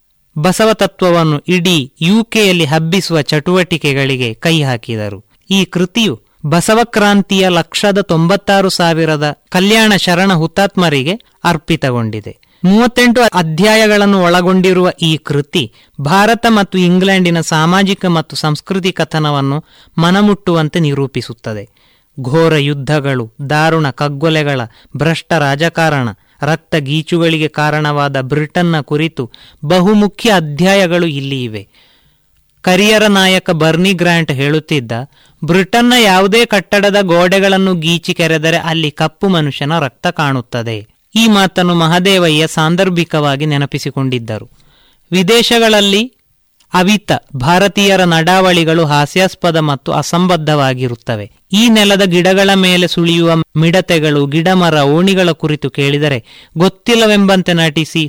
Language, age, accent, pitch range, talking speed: Kannada, 20-39, native, 150-190 Hz, 90 wpm